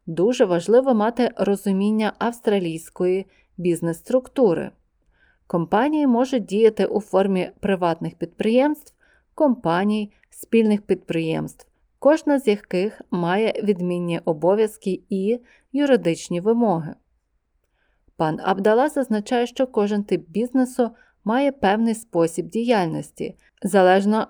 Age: 20-39